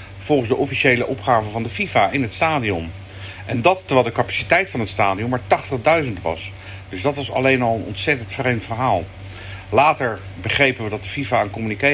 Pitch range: 95-125 Hz